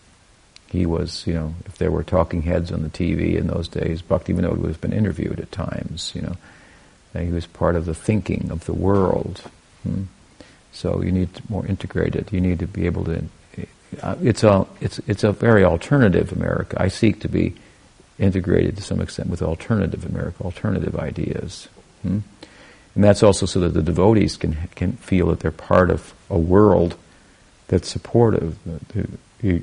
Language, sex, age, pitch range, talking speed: English, male, 50-69, 85-100 Hz, 180 wpm